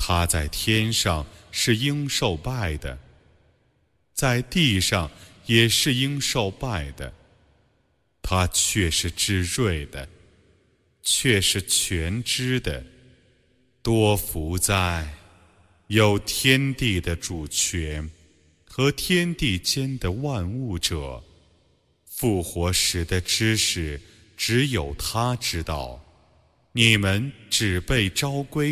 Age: 30-49